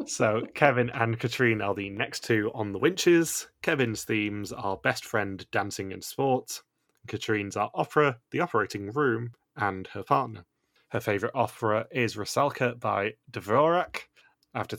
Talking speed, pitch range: 145 wpm, 100-120 Hz